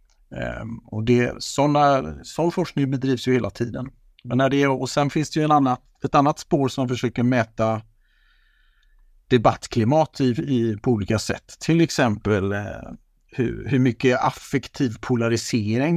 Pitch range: 115-145 Hz